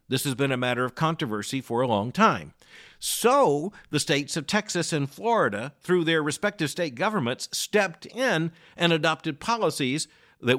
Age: 50-69